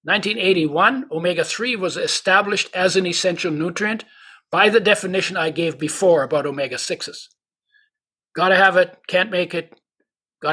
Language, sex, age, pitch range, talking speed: English, male, 60-79, 155-200 Hz, 135 wpm